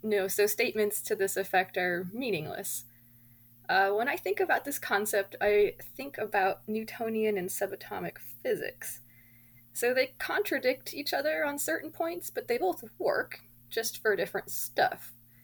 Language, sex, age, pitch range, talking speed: English, female, 20-39, 175-220 Hz, 150 wpm